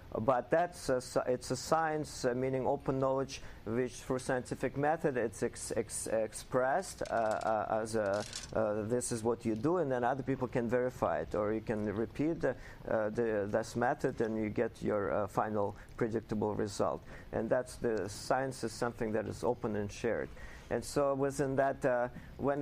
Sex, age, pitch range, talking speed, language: male, 50-69, 110-130 Hz, 185 wpm, English